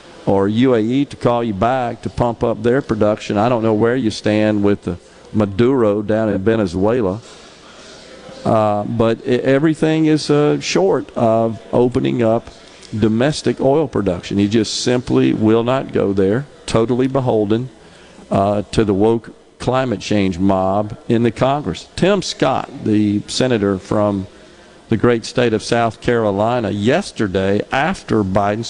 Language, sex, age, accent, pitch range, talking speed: English, male, 50-69, American, 105-130 Hz, 140 wpm